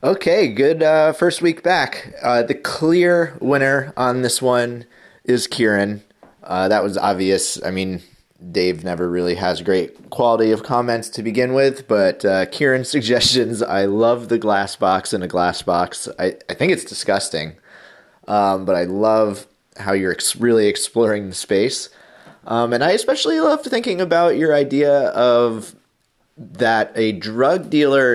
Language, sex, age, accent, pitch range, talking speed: English, male, 30-49, American, 100-140 Hz, 160 wpm